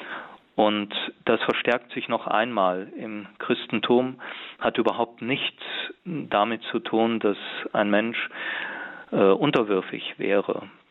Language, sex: German, male